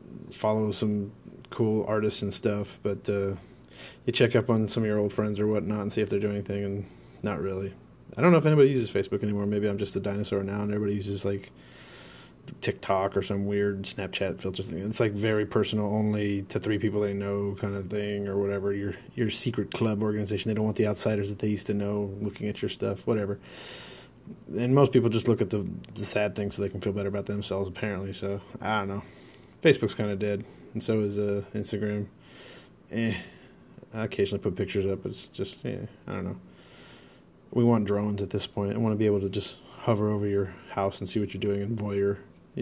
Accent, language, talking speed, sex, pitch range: American, English, 220 wpm, male, 100-110 Hz